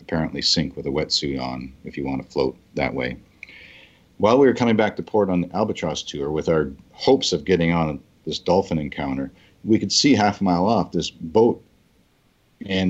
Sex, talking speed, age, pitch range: male, 200 wpm, 50-69, 80-100 Hz